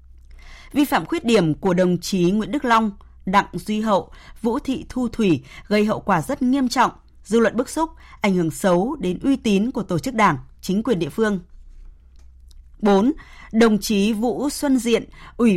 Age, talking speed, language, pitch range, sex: 20-39, 185 wpm, Vietnamese, 180-240 Hz, female